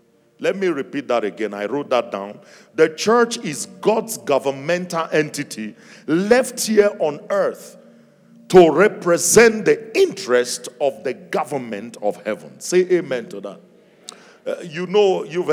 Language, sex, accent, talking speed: English, male, Nigerian, 140 wpm